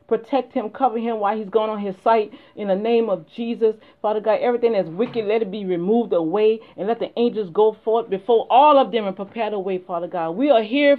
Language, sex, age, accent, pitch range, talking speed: English, female, 40-59, American, 190-260 Hz, 240 wpm